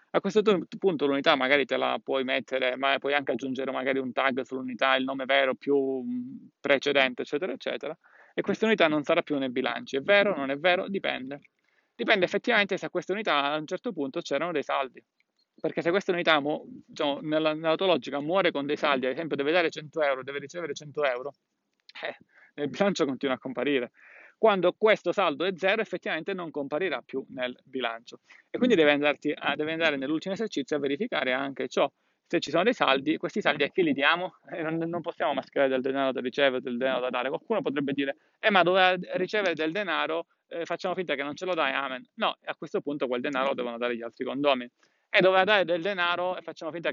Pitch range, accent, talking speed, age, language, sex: 135-180 Hz, native, 210 wpm, 30-49, Italian, male